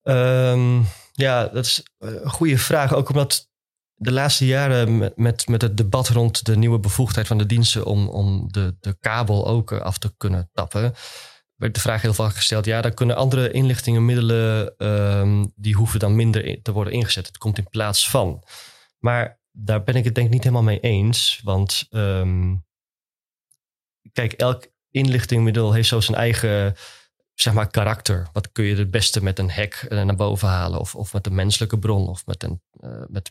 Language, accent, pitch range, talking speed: Dutch, Dutch, 105-120 Hz, 180 wpm